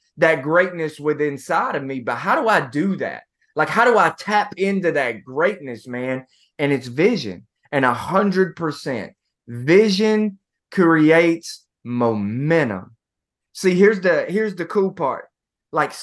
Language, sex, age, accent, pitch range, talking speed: English, male, 20-39, American, 150-200 Hz, 145 wpm